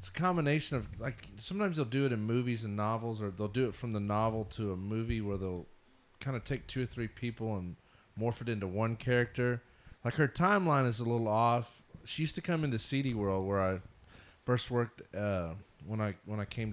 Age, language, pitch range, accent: 30-49, English, 100-125 Hz, American